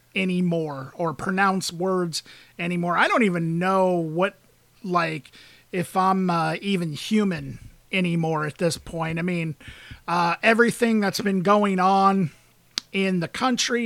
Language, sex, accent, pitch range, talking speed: English, male, American, 175-220 Hz, 135 wpm